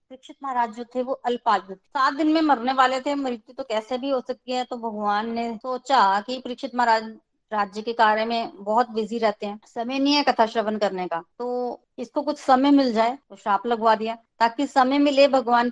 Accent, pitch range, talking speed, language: native, 220-270 Hz, 200 wpm, Hindi